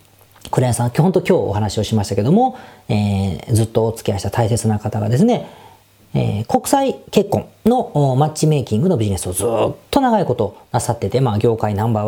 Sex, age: female, 40-59